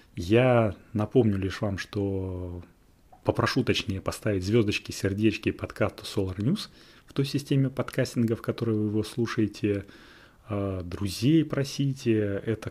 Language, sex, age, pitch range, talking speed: Russian, male, 30-49, 100-120 Hz, 115 wpm